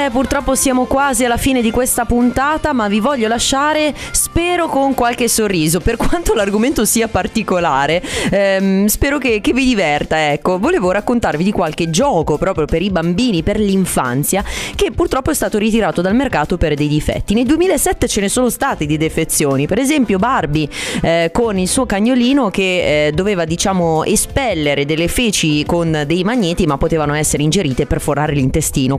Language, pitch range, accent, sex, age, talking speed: Italian, 155-240 Hz, native, female, 20-39, 170 wpm